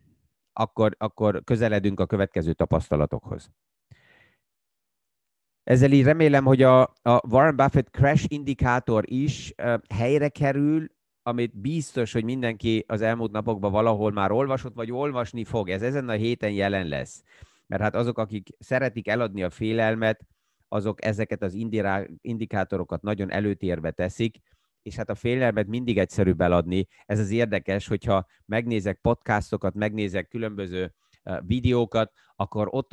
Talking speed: 130 wpm